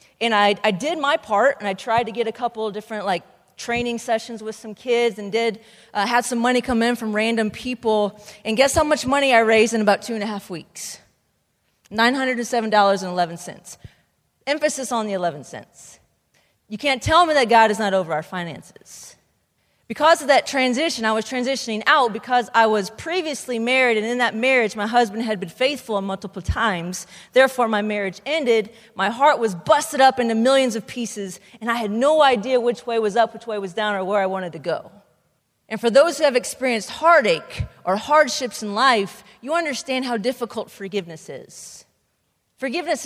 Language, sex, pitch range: English, female, 205-255 Hz